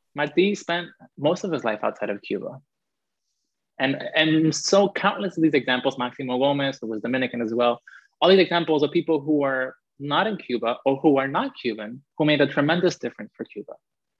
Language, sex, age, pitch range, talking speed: English, male, 20-39, 125-155 Hz, 190 wpm